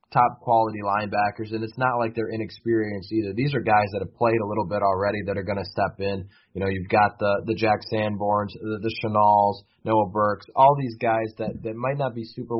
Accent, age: American, 20-39